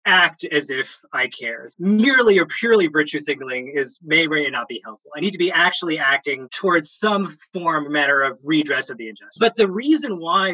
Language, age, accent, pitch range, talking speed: English, 20-39, American, 150-225 Hz, 205 wpm